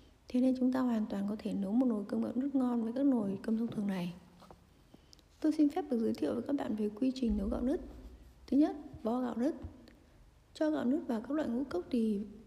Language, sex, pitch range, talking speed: Vietnamese, female, 230-275 Hz, 245 wpm